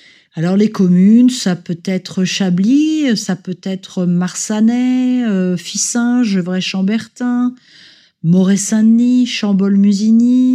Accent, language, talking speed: French, French, 100 wpm